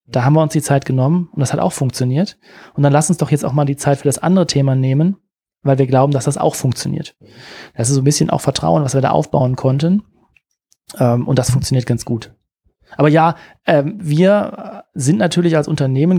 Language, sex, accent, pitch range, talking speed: German, male, German, 135-160 Hz, 215 wpm